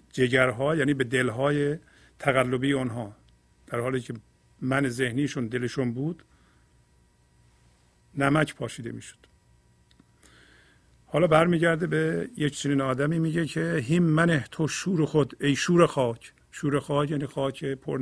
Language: Persian